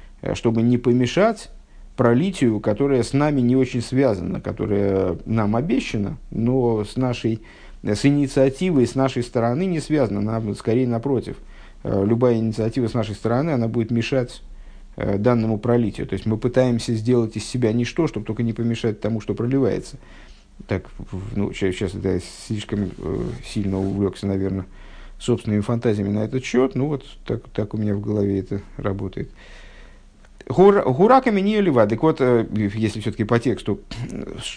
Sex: male